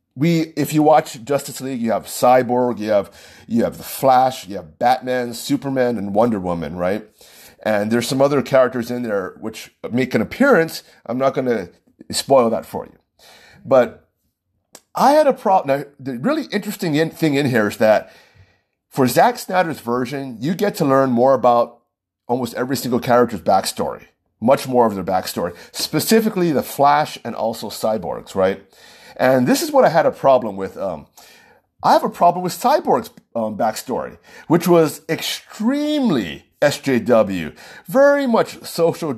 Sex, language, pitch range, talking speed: male, English, 125-165 Hz, 165 wpm